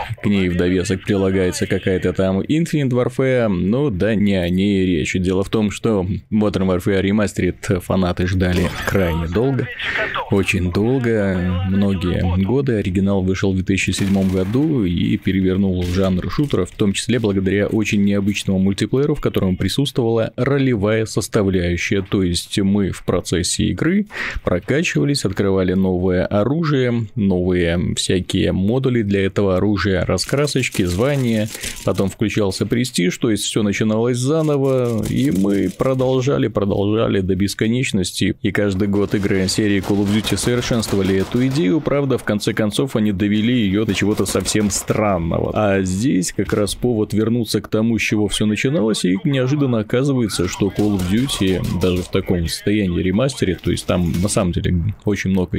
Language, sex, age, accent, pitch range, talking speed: Russian, male, 20-39, native, 95-115 Hz, 150 wpm